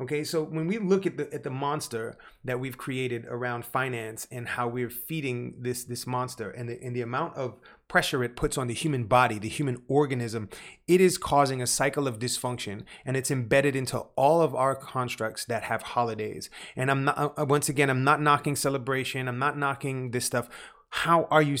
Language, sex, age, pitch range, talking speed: English, male, 30-49, 120-145 Hz, 205 wpm